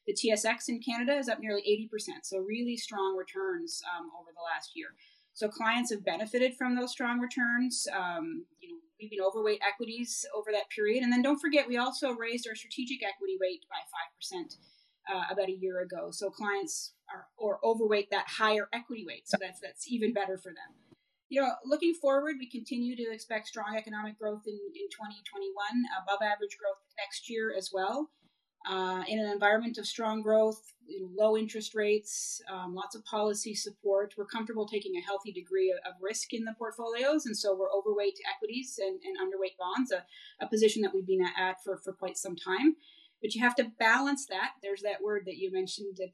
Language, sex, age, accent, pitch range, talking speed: English, female, 30-49, American, 195-245 Hz, 200 wpm